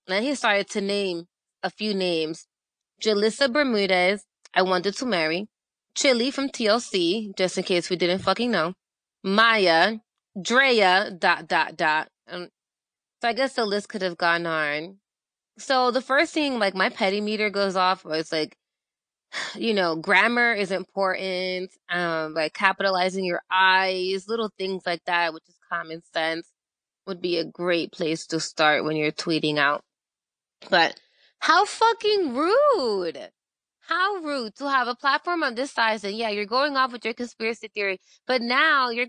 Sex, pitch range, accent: female, 185-250 Hz, American